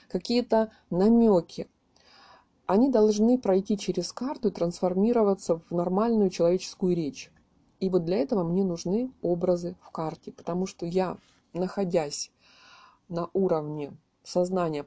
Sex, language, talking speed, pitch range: female, Russian, 115 wpm, 170-205 Hz